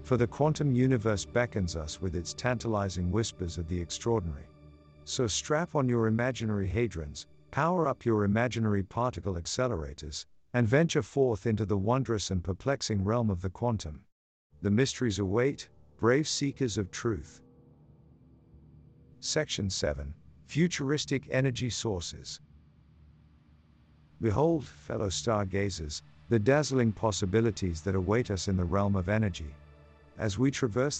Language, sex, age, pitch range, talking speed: English, male, 50-69, 85-120 Hz, 130 wpm